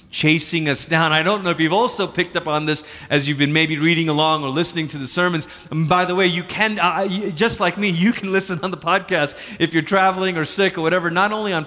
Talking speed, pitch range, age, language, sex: 250 wpm, 145-205 Hz, 30-49, English, male